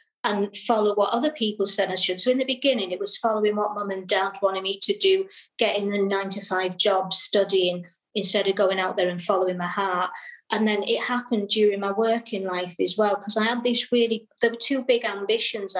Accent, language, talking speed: British, English, 215 wpm